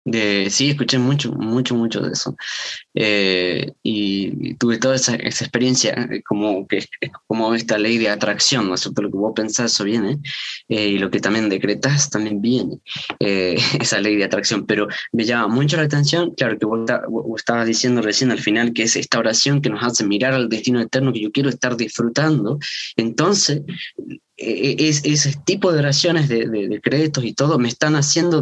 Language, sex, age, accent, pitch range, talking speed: Spanish, male, 20-39, Argentinian, 115-155 Hz, 195 wpm